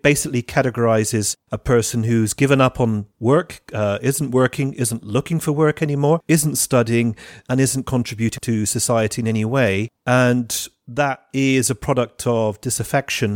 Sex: male